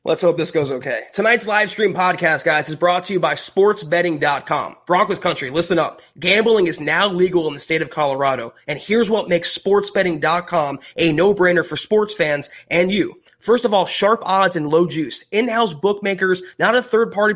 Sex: male